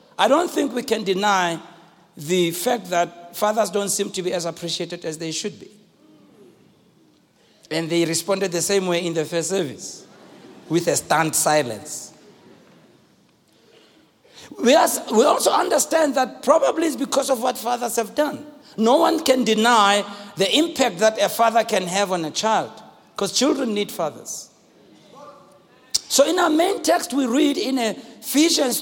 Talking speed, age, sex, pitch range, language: 150 wpm, 60-79, male, 205-275 Hz, English